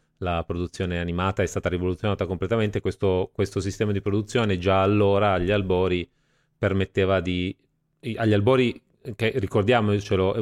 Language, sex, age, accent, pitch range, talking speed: Italian, male, 30-49, native, 95-115 Hz, 130 wpm